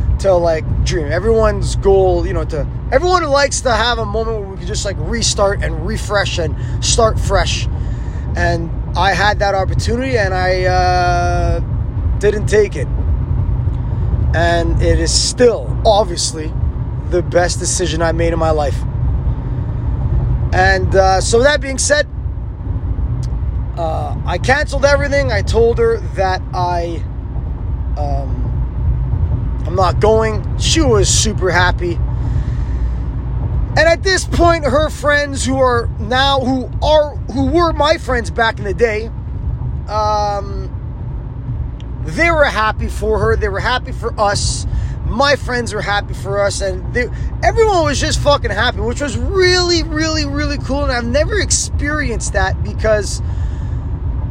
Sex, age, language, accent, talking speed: male, 20-39, English, American, 140 wpm